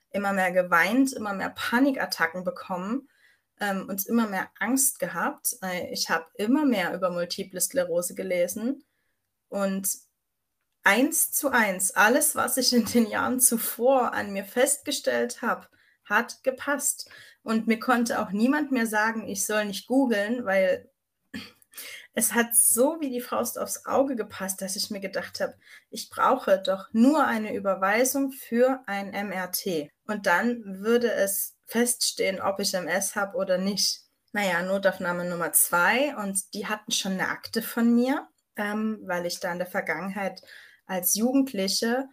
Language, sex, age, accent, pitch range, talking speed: German, female, 20-39, German, 190-255 Hz, 150 wpm